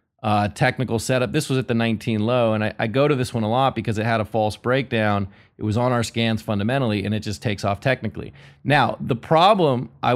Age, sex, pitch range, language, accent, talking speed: 30-49, male, 110-135 Hz, English, American, 235 wpm